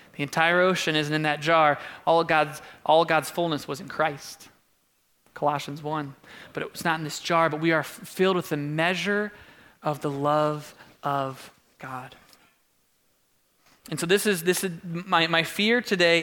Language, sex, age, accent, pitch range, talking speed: English, male, 20-39, American, 155-240 Hz, 180 wpm